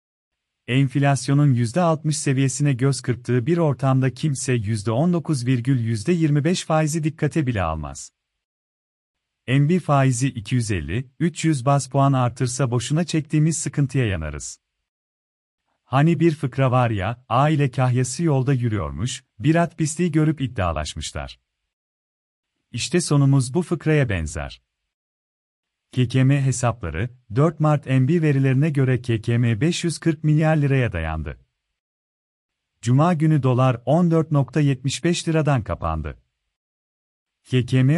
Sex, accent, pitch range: male, native, 115-150 Hz